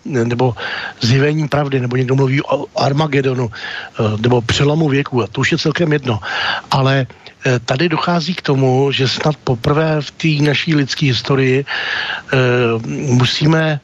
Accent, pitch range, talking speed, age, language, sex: native, 130-150 Hz, 140 wpm, 60-79, Czech, male